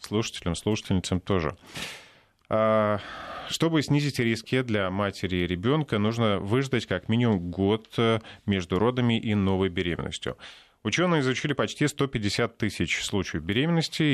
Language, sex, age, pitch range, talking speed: Russian, male, 20-39, 95-125 Hz, 115 wpm